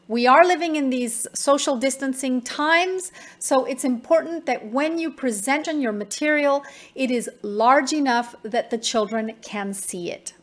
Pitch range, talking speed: 220-275 Hz, 160 wpm